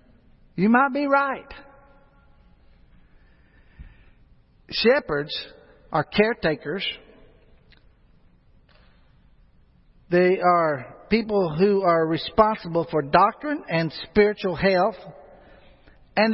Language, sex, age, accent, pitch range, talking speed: English, male, 60-79, American, 125-190 Hz, 70 wpm